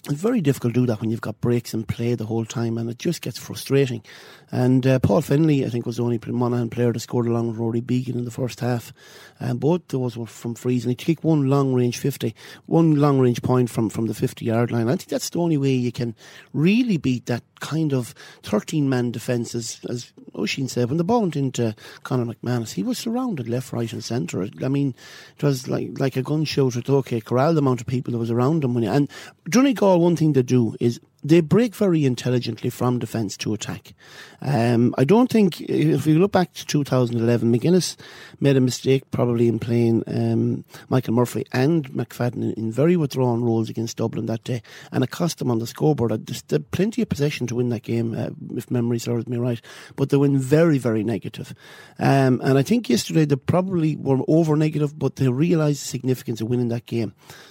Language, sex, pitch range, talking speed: English, male, 120-150 Hz, 220 wpm